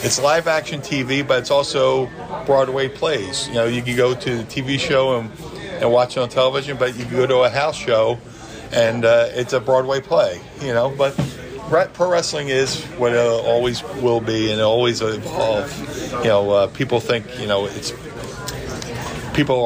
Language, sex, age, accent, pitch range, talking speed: English, male, 40-59, American, 110-135 Hz, 190 wpm